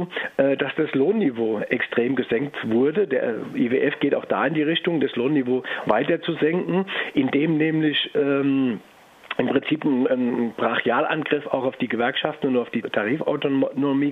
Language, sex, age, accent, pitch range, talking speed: German, male, 50-69, German, 135-165 Hz, 155 wpm